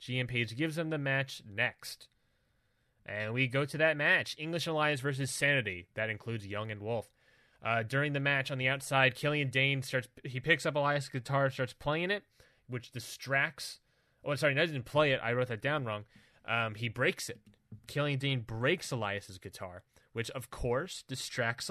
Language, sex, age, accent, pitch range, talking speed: English, male, 20-39, American, 115-145 Hz, 185 wpm